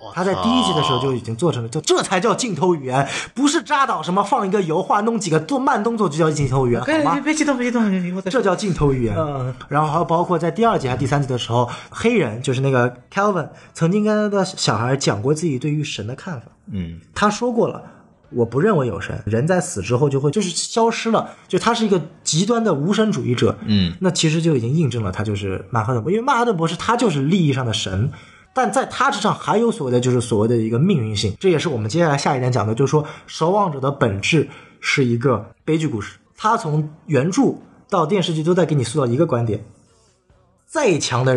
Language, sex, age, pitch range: Chinese, male, 20-39, 120-185 Hz